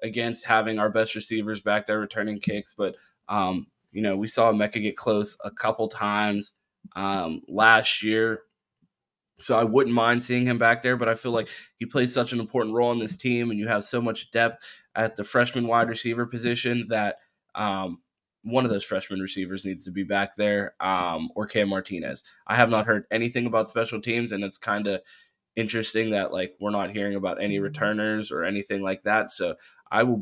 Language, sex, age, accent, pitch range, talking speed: English, male, 20-39, American, 105-120 Hz, 200 wpm